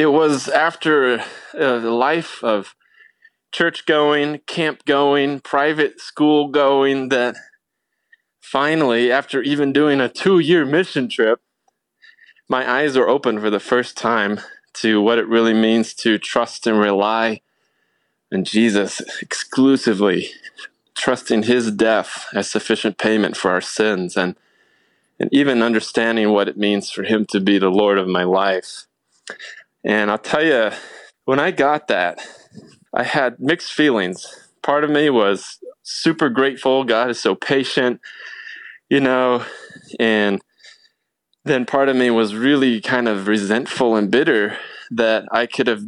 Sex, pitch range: male, 110-150 Hz